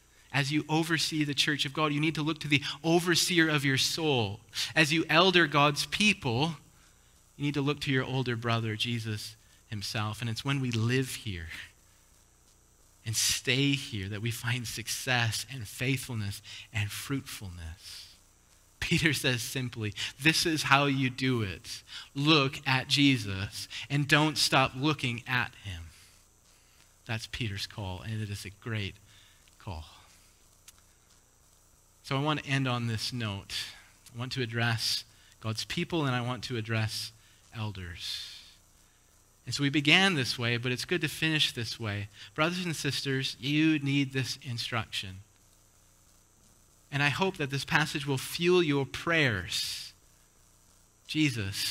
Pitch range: 105-140 Hz